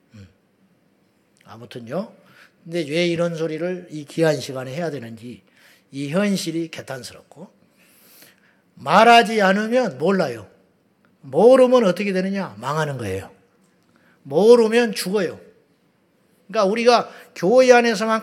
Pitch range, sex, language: 185-270 Hz, male, Korean